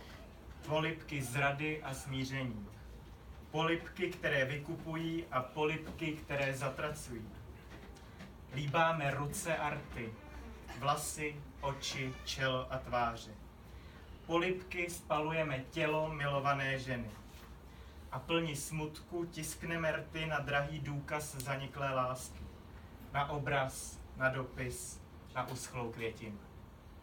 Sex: male